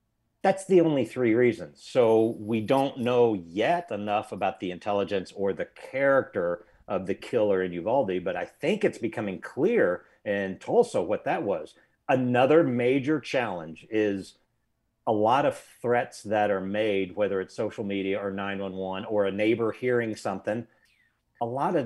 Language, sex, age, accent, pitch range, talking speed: English, male, 50-69, American, 100-135 Hz, 160 wpm